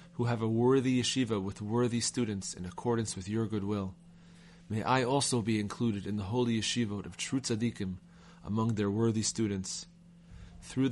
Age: 30-49